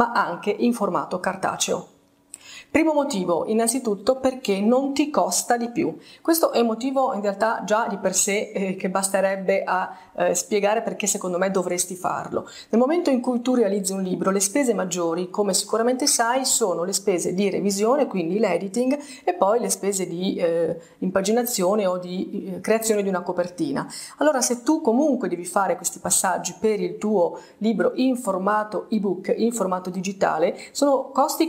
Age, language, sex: 30-49, Italian, female